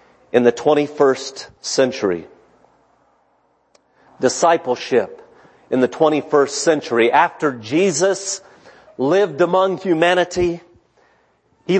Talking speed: 75 wpm